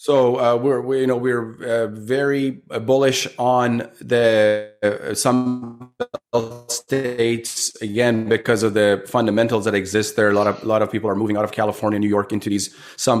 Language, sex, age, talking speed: English, male, 30-49, 175 wpm